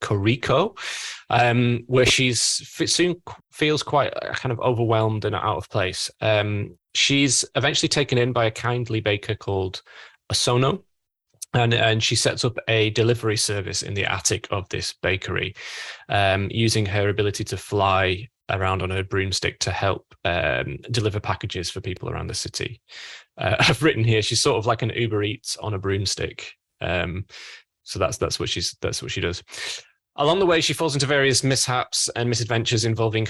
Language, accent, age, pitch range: English, British, 10-29, 100-120 Hz